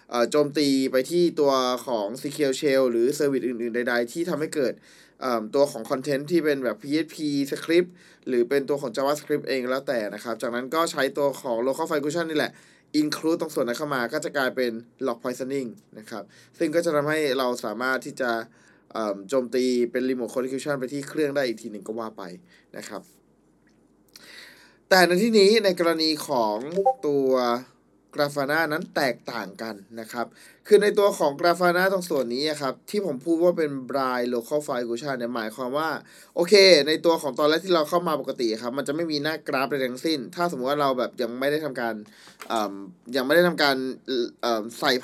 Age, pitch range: 20-39, 125-165 Hz